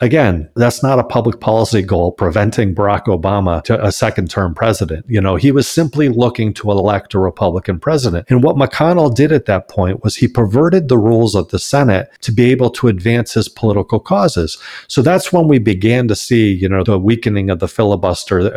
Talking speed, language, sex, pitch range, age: 205 wpm, English, male, 100-135 Hz, 50-69